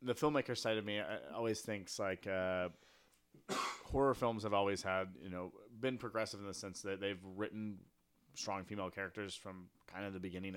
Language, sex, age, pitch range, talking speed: English, male, 30-49, 95-120 Hz, 180 wpm